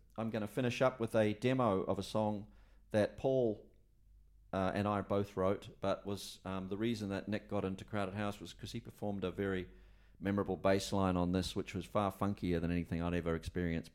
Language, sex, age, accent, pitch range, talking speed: English, male, 40-59, Australian, 95-110 Hz, 210 wpm